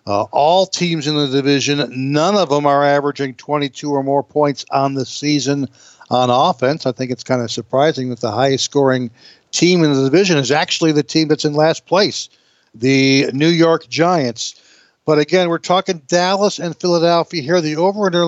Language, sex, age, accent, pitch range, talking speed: English, male, 60-79, American, 140-170 Hz, 185 wpm